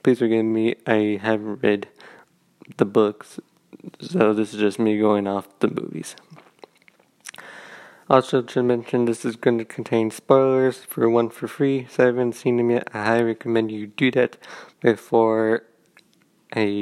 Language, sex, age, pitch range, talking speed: English, male, 20-39, 110-130 Hz, 155 wpm